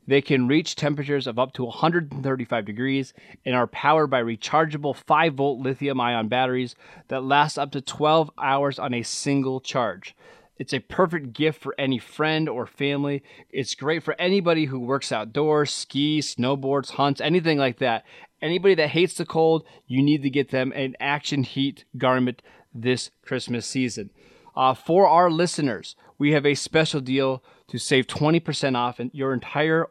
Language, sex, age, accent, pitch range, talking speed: English, male, 30-49, American, 125-155 Hz, 165 wpm